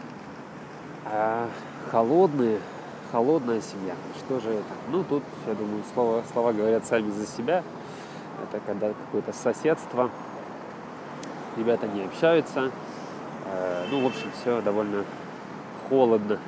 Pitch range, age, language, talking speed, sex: 105-125 Hz, 20-39, Russian, 110 wpm, male